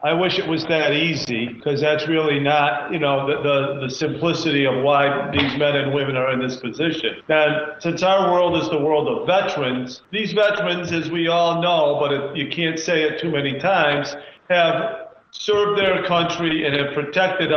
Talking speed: 195 wpm